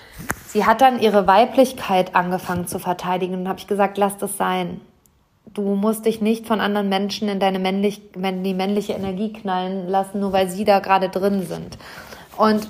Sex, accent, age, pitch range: female, German, 30-49, 190-215 Hz